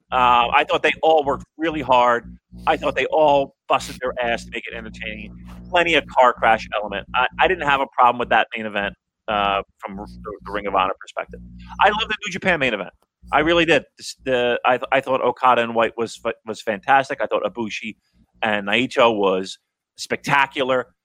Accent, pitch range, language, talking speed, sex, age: American, 110-165 Hz, English, 200 wpm, male, 30-49